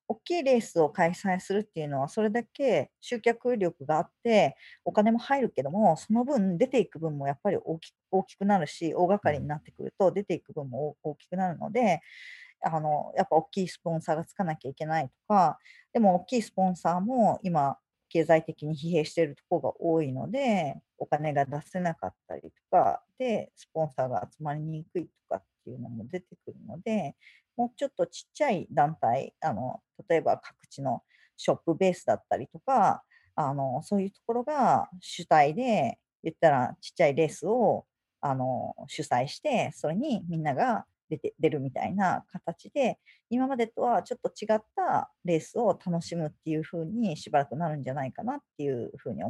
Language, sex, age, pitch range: Japanese, female, 40-59, 155-230 Hz